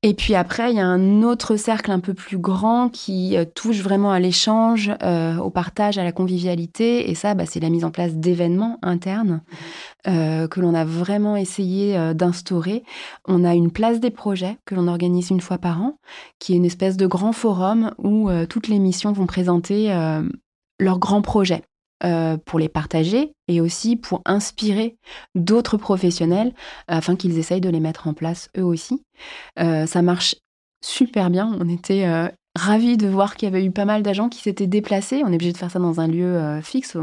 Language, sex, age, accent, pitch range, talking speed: French, female, 30-49, French, 170-215 Hz, 200 wpm